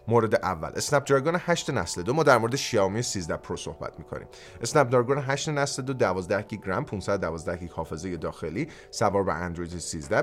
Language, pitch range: Persian, 100-145 Hz